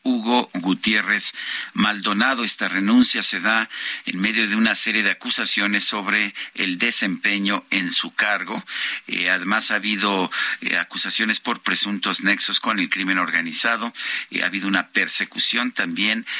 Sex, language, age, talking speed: male, Spanish, 50-69, 145 wpm